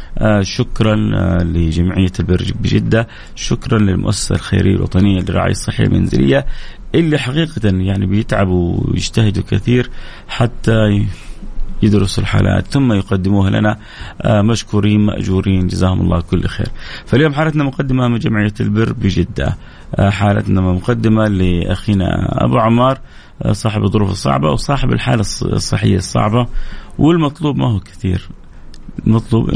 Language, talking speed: Arabic, 120 wpm